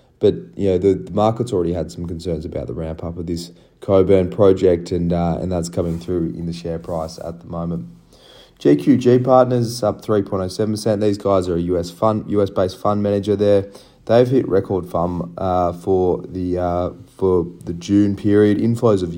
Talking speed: 190 wpm